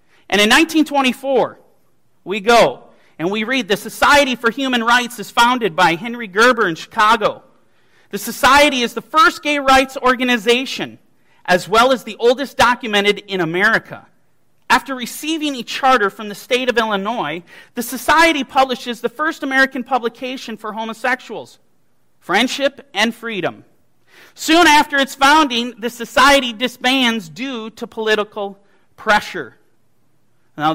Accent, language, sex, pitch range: American, English, male, 215-275 Hz